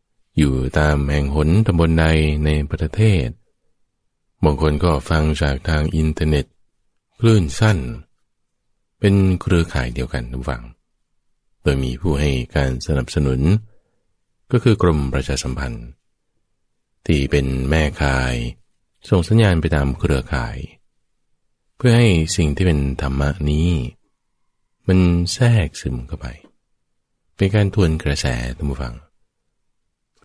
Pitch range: 70-95 Hz